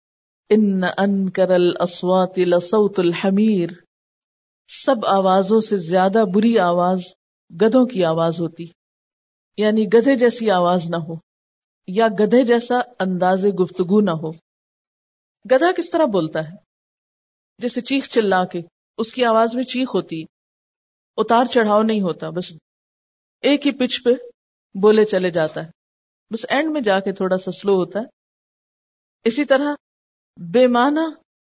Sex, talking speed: female, 130 wpm